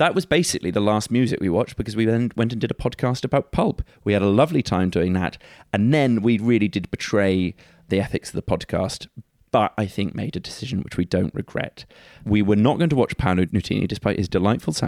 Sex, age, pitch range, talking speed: male, 30-49, 95-115 Hz, 230 wpm